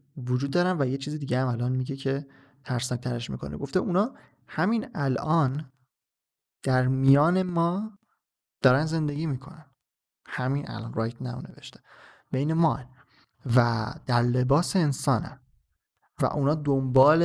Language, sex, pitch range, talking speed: Persian, male, 120-150 Hz, 130 wpm